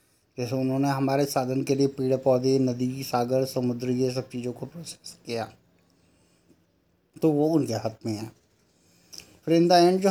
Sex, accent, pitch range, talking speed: male, native, 125-155 Hz, 170 wpm